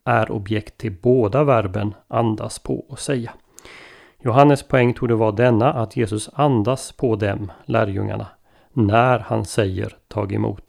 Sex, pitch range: male, 105-125 Hz